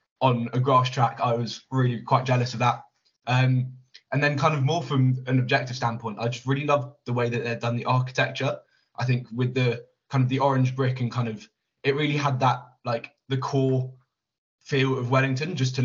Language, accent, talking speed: English, British, 215 wpm